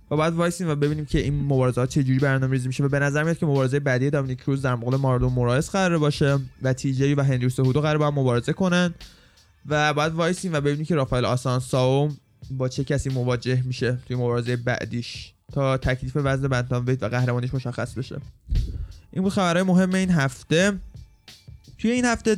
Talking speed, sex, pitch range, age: 185 wpm, male, 130-155 Hz, 20-39